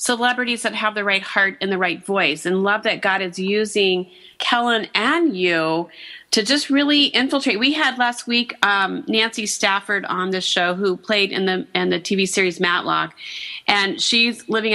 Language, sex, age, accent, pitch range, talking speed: English, female, 40-59, American, 195-245 Hz, 185 wpm